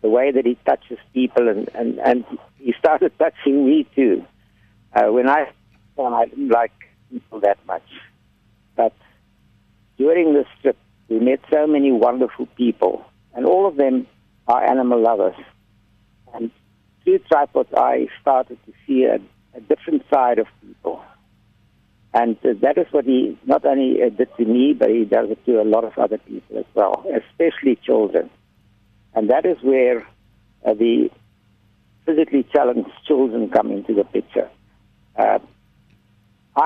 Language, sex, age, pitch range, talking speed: English, male, 60-79, 105-135 Hz, 150 wpm